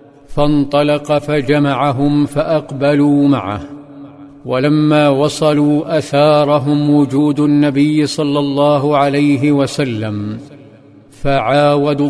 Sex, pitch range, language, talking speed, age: male, 140-150 Hz, Arabic, 70 wpm, 50-69